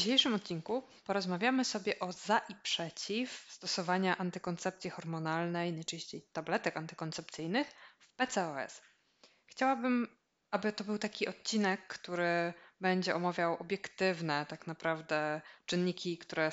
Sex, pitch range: female, 165-205 Hz